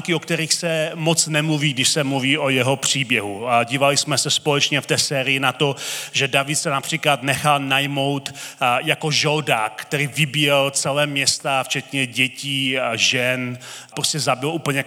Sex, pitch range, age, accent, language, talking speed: male, 135-165 Hz, 30-49, native, Czech, 155 wpm